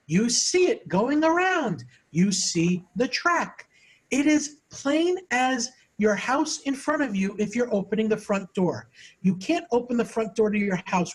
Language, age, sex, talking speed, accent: English, 50-69, male, 185 wpm, American